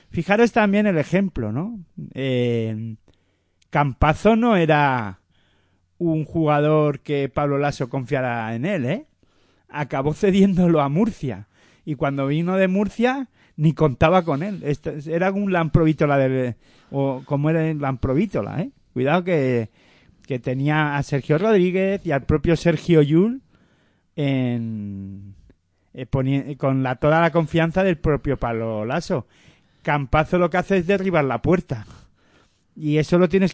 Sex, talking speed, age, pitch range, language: male, 140 wpm, 40-59, 130-180 Hz, Spanish